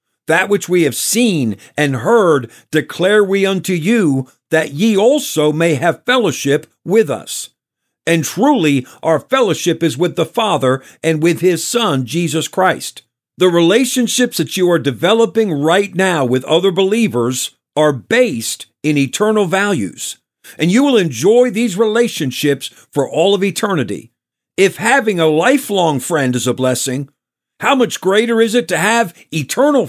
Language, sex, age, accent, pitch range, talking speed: English, male, 50-69, American, 155-210 Hz, 150 wpm